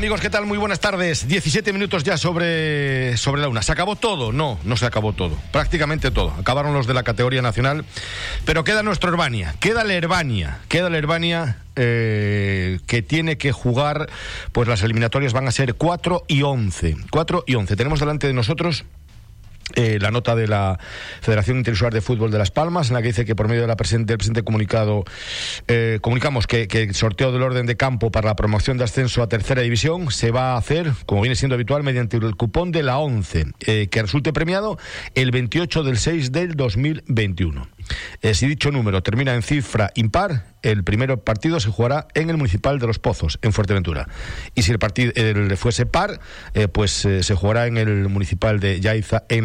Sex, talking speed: male, 205 wpm